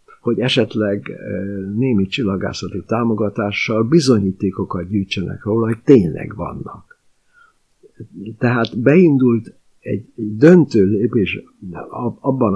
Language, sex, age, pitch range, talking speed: Hungarian, male, 60-79, 100-120 Hz, 80 wpm